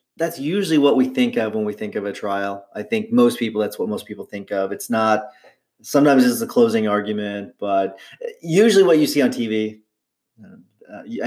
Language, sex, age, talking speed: English, male, 30-49, 195 wpm